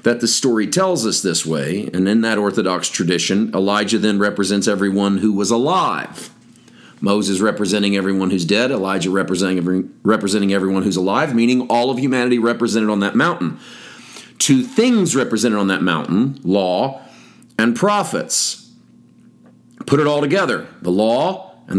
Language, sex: English, male